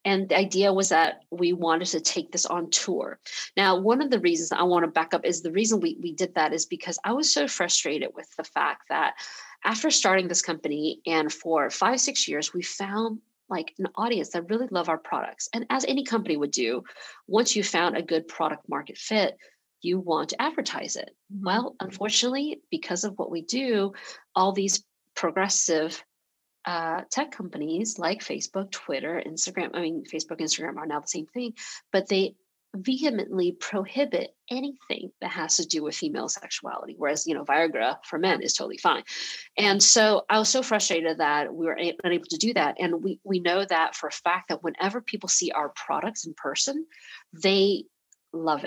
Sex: female